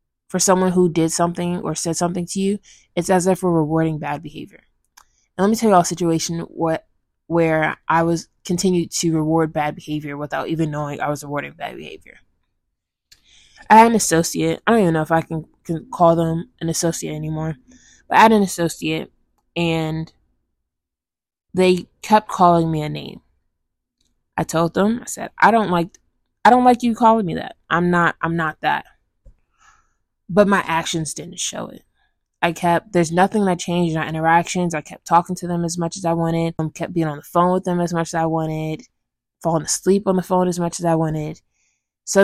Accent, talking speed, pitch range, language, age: American, 200 wpm, 155-185 Hz, English, 20-39